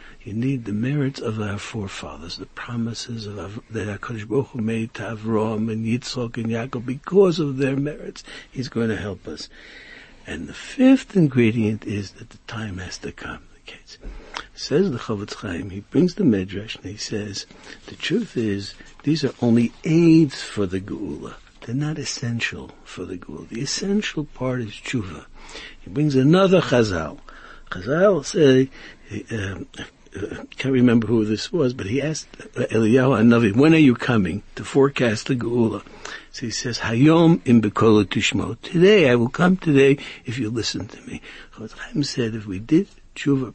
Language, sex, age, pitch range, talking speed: English, male, 60-79, 110-150 Hz, 175 wpm